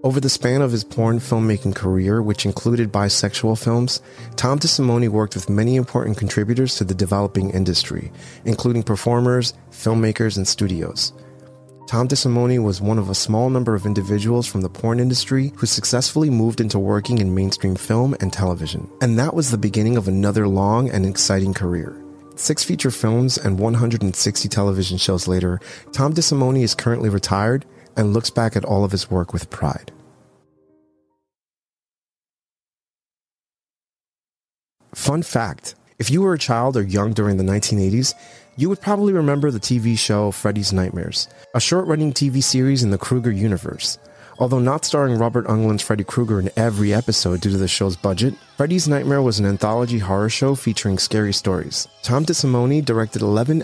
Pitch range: 100-125 Hz